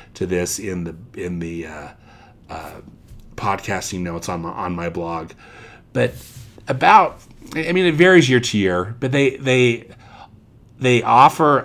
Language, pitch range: English, 100-135 Hz